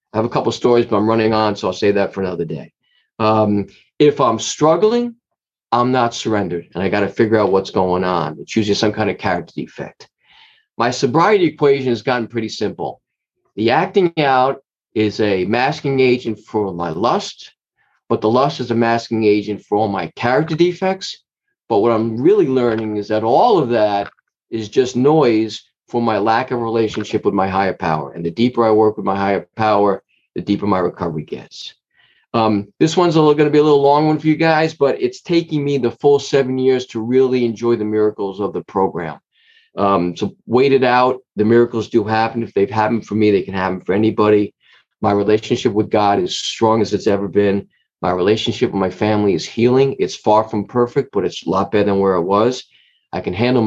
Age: 40-59